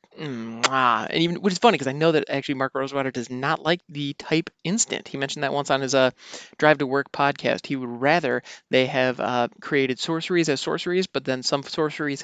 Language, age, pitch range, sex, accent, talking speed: English, 20-39, 130-160 Hz, male, American, 210 wpm